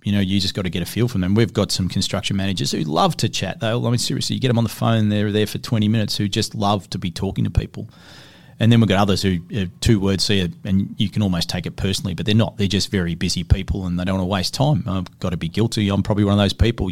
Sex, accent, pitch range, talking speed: male, Australian, 100-120 Hz, 310 wpm